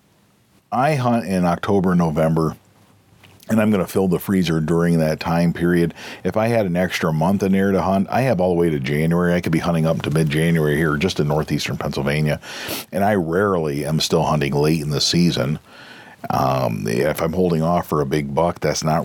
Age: 50-69